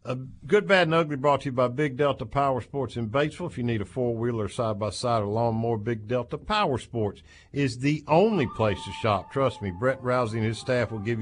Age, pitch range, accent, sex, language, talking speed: 50-69, 105-135 Hz, American, male, English, 225 wpm